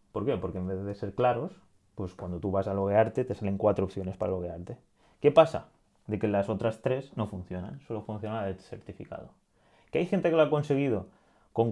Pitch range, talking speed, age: 95-115 Hz, 210 wpm, 20-39